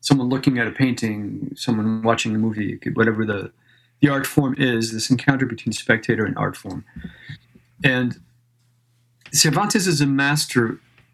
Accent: American